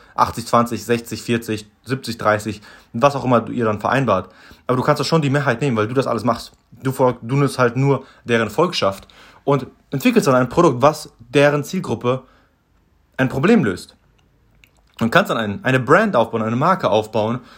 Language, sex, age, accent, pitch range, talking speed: German, male, 30-49, German, 110-135 Hz, 180 wpm